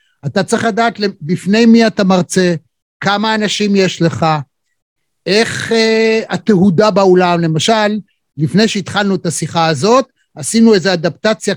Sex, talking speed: male, 125 wpm